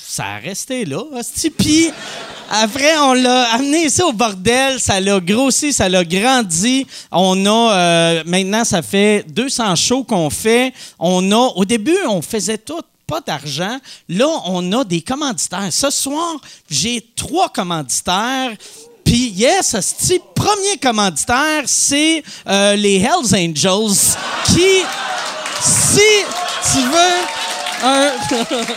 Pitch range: 185-265 Hz